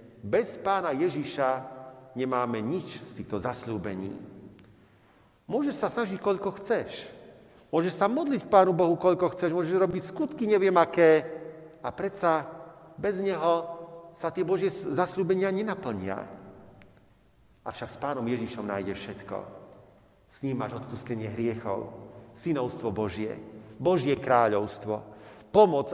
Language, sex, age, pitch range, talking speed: Slovak, male, 50-69, 115-180 Hz, 115 wpm